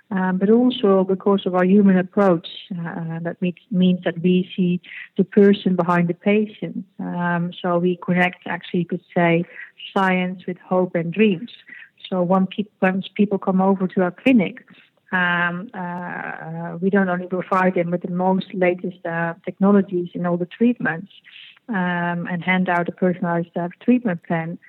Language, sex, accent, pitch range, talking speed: English, female, Dutch, 175-195 Hz, 165 wpm